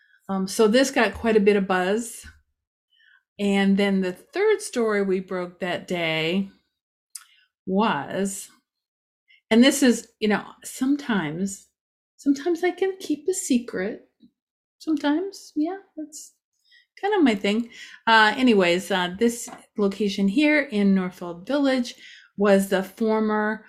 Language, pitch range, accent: English, 190-275 Hz, American